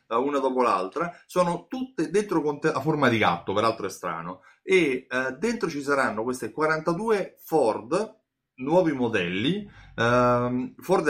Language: Italian